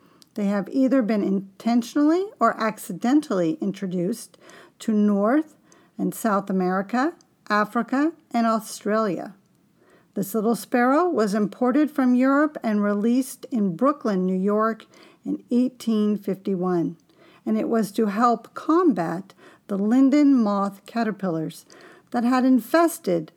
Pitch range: 195-250 Hz